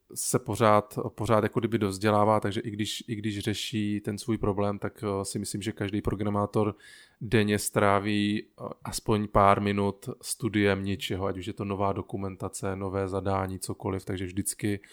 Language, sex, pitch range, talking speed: Czech, male, 95-105 Hz, 155 wpm